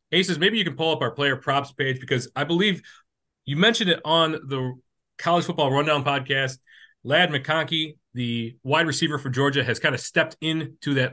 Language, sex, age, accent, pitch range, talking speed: English, male, 30-49, American, 120-150 Hz, 190 wpm